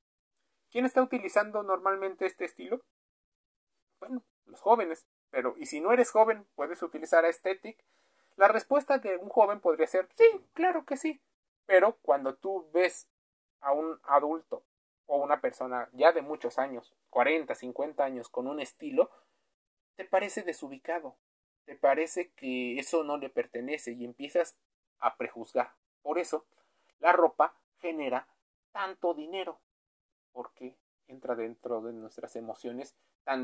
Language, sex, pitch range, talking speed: Spanish, male, 125-200 Hz, 140 wpm